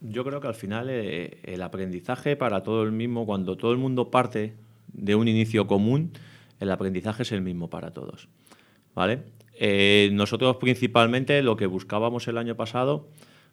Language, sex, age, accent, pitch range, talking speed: Spanish, male, 30-49, Spanish, 95-115 Hz, 165 wpm